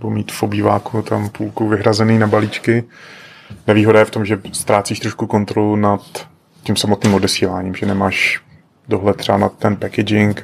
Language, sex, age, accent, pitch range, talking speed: Czech, male, 30-49, native, 100-110 Hz, 160 wpm